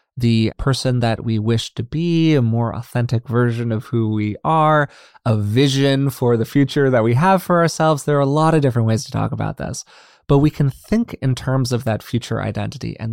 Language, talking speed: English, 215 wpm